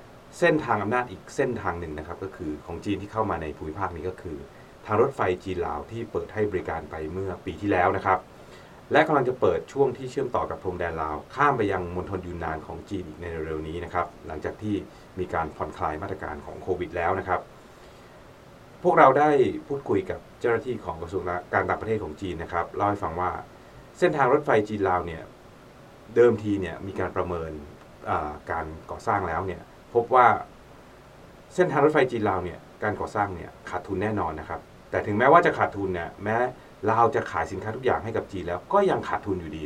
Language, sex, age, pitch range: Thai, male, 30-49, 85-105 Hz